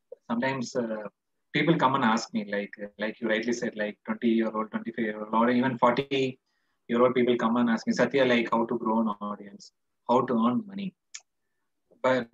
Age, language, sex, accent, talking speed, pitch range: 30-49, Hindi, male, native, 195 wpm, 115-170 Hz